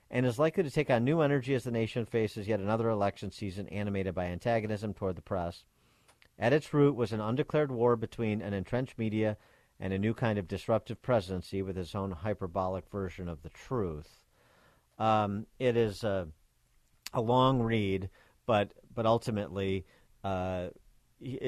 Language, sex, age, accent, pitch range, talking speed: English, male, 50-69, American, 95-115 Hz, 165 wpm